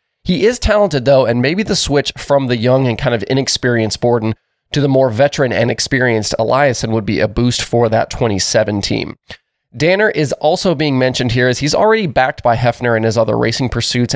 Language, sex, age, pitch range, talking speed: English, male, 20-39, 115-150 Hz, 205 wpm